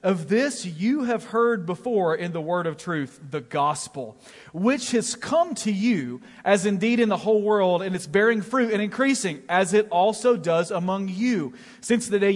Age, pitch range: 40-59, 190-240 Hz